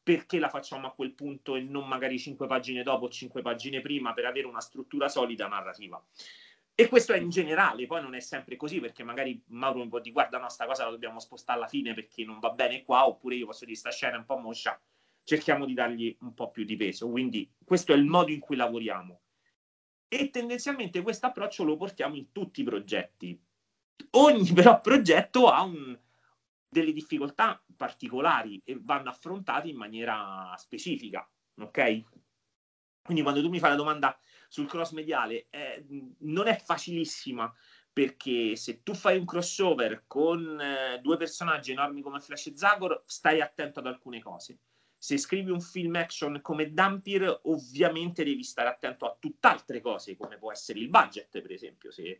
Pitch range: 125-185 Hz